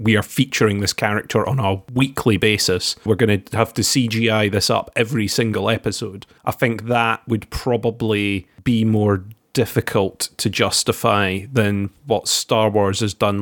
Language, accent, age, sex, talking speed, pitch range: English, British, 30-49, male, 160 wpm, 105-125 Hz